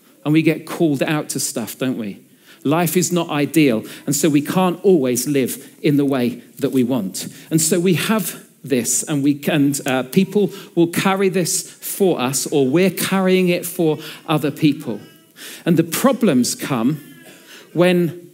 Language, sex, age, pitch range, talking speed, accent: English, male, 40-59, 150-190 Hz, 170 wpm, British